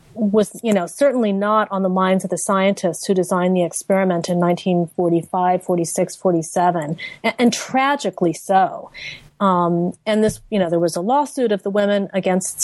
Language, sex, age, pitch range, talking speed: English, female, 30-49, 185-230 Hz, 170 wpm